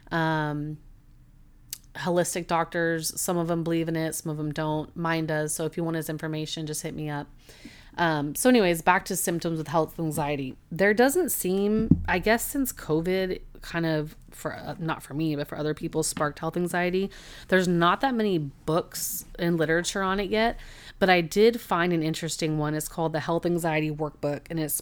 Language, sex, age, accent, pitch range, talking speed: English, female, 30-49, American, 155-180 Hz, 195 wpm